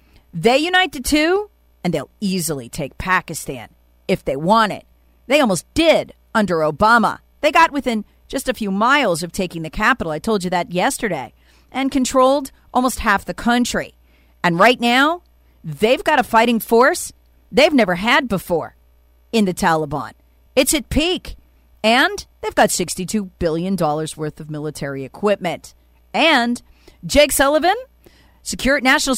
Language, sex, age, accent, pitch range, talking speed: English, female, 40-59, American, 170-270 Hz, 150 wpm